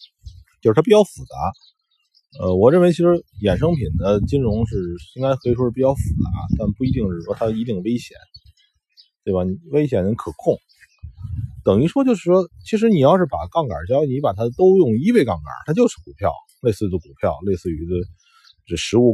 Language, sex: Chinese, male